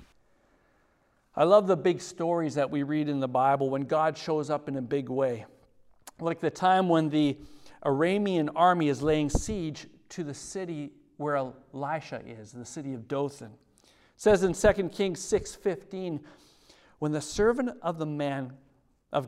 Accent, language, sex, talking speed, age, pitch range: American, English, male, 160 wpm, 50-69, 135-175 Hz